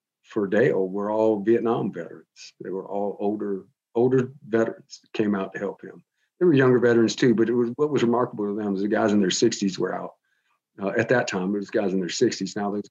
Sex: male